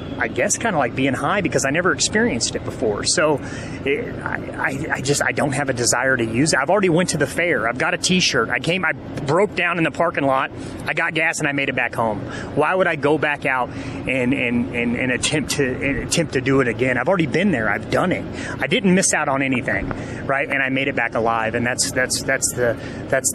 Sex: male